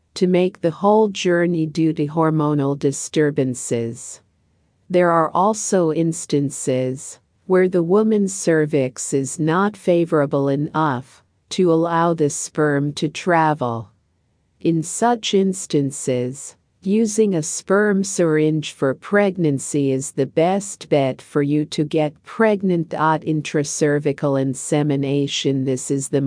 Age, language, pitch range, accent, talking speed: 50-69, English, 140-180 Hz, American, 115 wpm